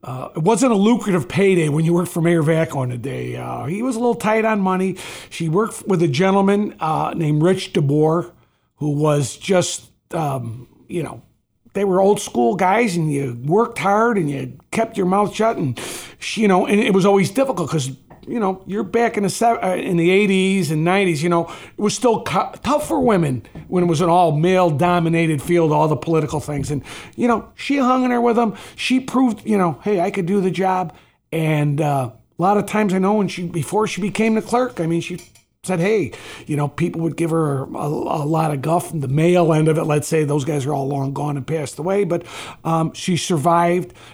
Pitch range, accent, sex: 150-195 Hz, American, male